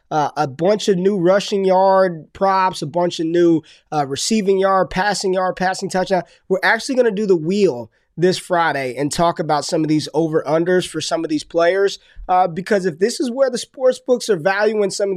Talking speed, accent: 210 wpm, American